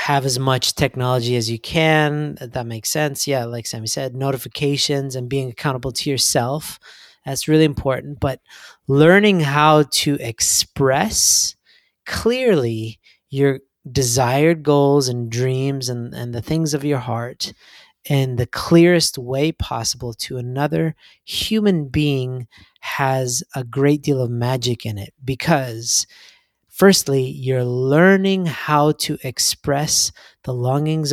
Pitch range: 130-155 Hz